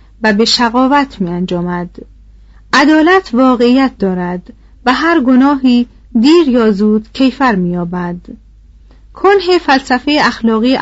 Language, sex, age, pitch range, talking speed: Persian, female, 40-59, 215-275 Hz, 110 wpm